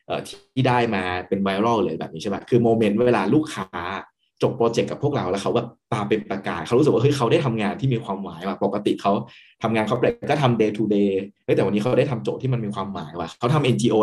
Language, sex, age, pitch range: Thai, male, 20-39, 105-135 Hz